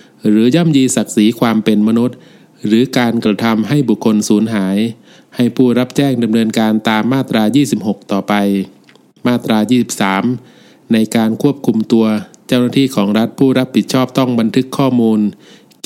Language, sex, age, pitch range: Thai, male, 20-39, 110-135 Hz